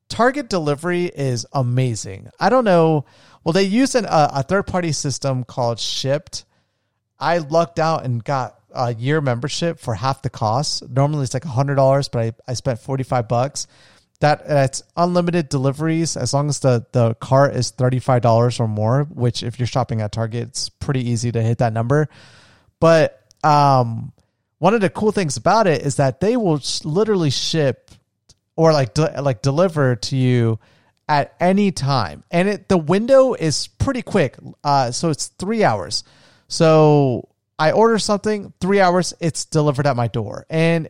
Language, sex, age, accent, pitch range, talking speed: English, male, 30-49, American, 125-170 Hz, 170 wpm